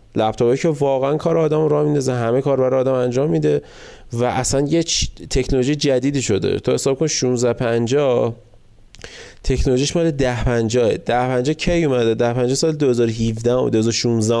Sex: male